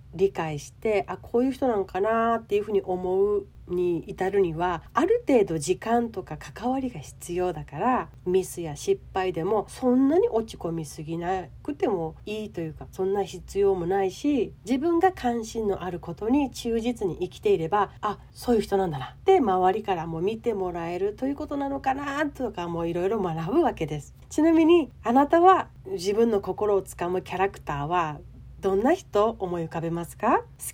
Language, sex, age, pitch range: Japanese, female, 40-59, 180-255 Hz